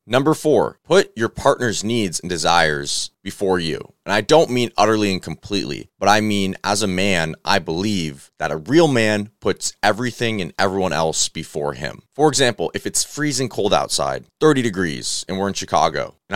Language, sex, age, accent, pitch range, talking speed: English, male, 30-49, American, 90-115 Hz, 185 wpm